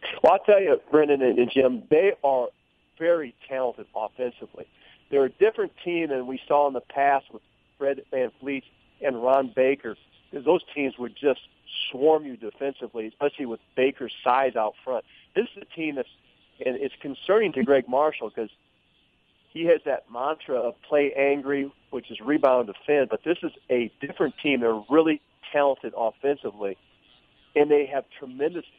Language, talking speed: English, 170 wpm